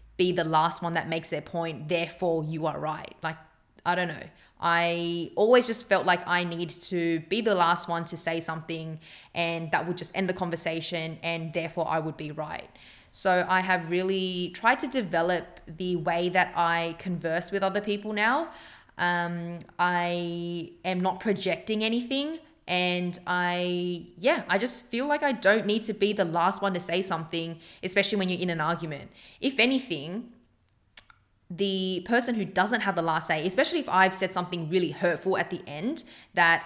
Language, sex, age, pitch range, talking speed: English, female, 20-39, 165-190 Hz, 180 wpm